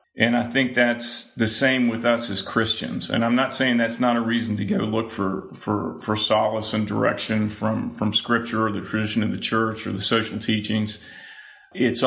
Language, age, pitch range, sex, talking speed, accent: English, 40-59, 105-120 Hz, male, 200 wpm, American